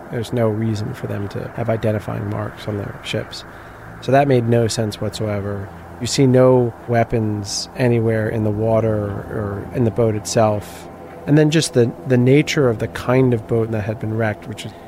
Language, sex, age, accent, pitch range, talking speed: English, male, 30-49, American, 105-125 Hz, 195 wpm